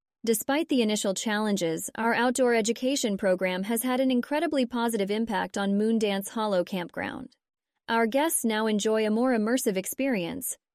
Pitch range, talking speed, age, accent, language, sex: 210-255 Hz, 145 wpm, 20-39, American, English, female